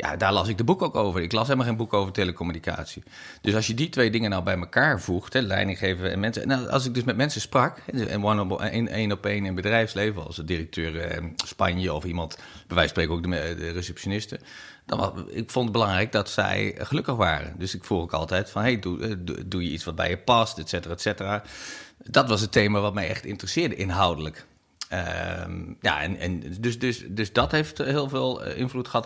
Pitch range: 90-110 Hz